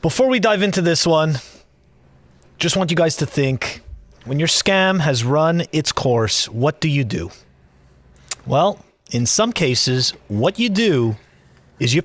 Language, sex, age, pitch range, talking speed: English, male, 30-49, 130-190 Hz, 160 wpm